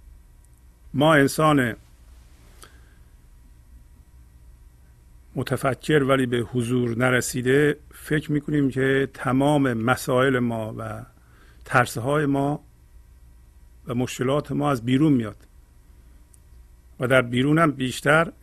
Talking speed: 90 wpm